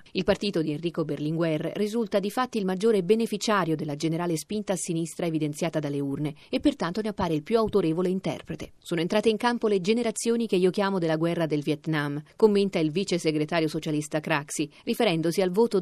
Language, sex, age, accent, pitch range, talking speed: Italian, female, 40-59, native, 155-210 Hz, 185 wpm